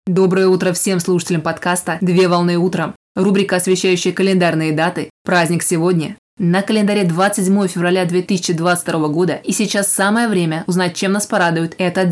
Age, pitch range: 20-39, 175-190 Hz